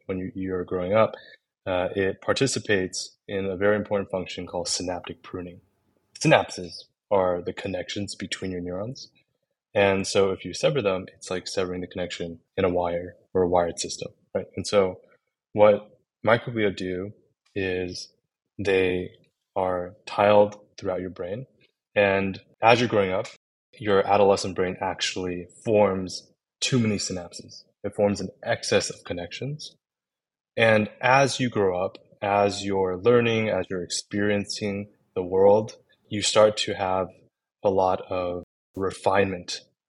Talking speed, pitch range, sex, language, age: 140 wpm, 90-105 Hz, male, English, 20-39